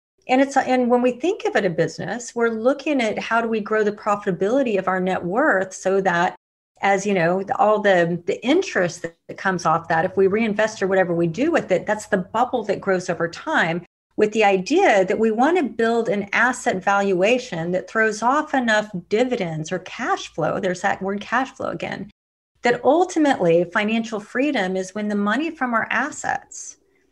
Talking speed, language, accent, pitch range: 195 wpm, English, American, 185-240 Hz